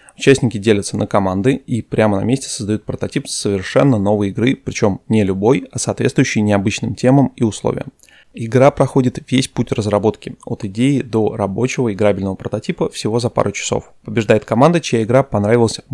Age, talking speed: 20-39, 160 wpm